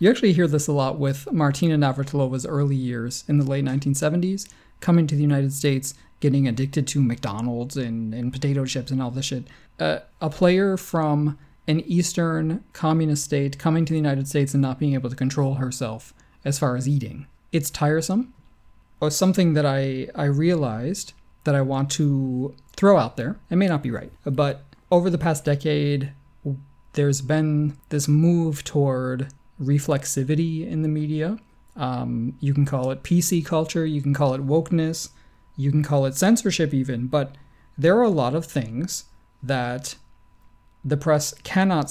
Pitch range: 135-160 Hz